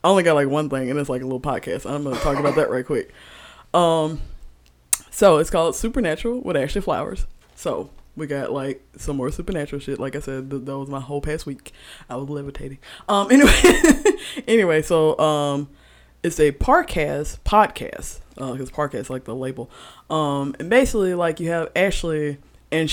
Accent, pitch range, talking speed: American, 140-165 Hz, 190 wpm